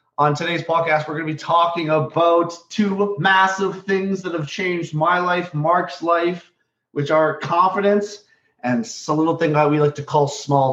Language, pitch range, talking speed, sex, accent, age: English, 130-165 Hz, 180 wpm, male, American, 30-49